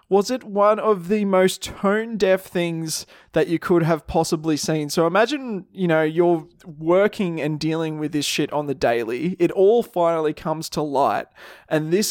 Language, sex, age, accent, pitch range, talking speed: English, male, 20-39, Australian, 155-195 Hz, 180 wpm